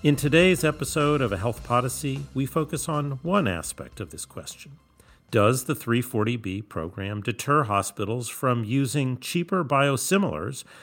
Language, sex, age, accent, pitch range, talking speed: English, male, 40-59, American, 105-150 Hz, 140 wpm